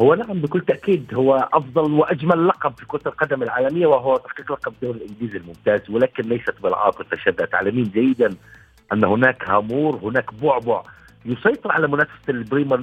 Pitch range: 140-200 Hz